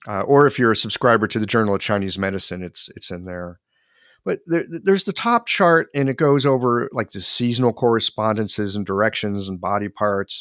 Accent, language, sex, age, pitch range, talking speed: American, English, male, 50-69, 110-170 Hz, 210 wpm